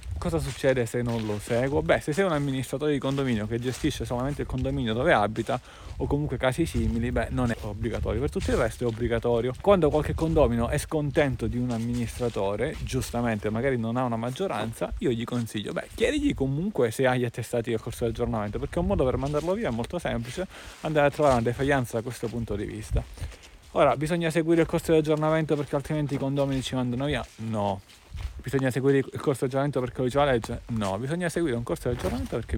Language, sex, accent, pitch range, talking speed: Italian, male, native, 115-150 Hz, 210 wpm